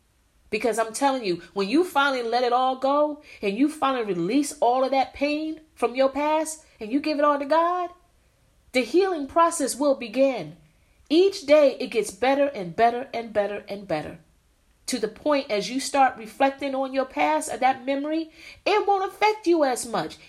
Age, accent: 40-59, American